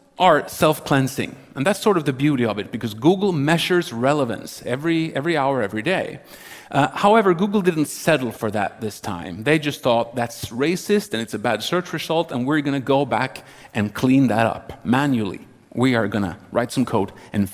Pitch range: 105-145 Hz